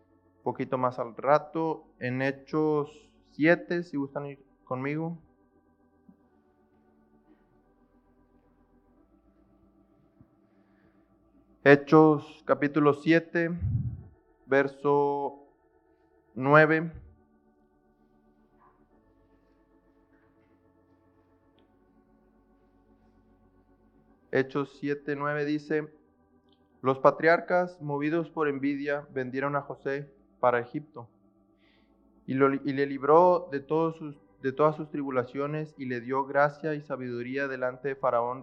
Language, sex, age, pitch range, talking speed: Spanish, male, 20-39, 120-150 Hz, 80 wpm